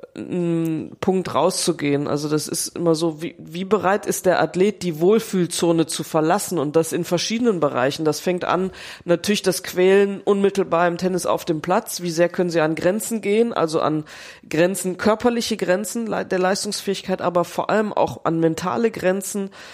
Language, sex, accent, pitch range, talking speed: German, female, German, 170-195 Hz, 170 wpm